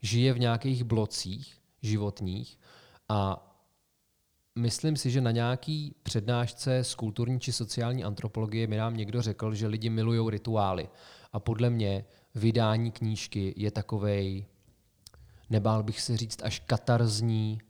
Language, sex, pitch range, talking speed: Czech, male, 105-115 Hz, 130 wpm